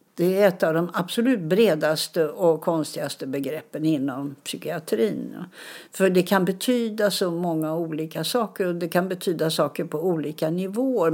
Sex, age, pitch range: female, 60-79, 165-215 Hz